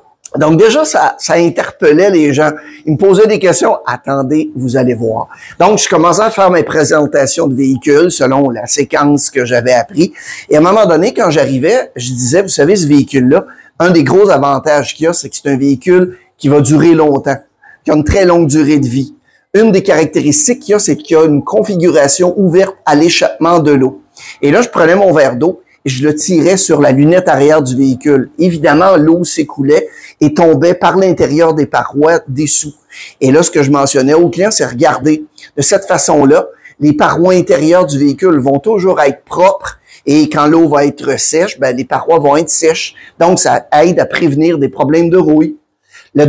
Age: 50-69